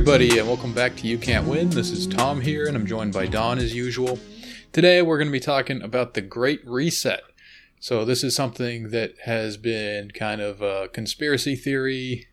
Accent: American